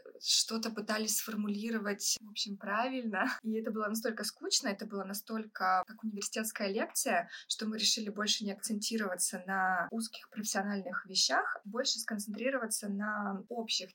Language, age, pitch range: Russian, 20-39, 195-225 Hz